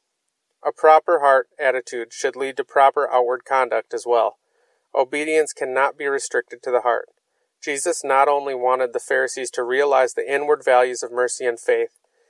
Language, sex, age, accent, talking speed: English, male, 30-49, American, 165 wpm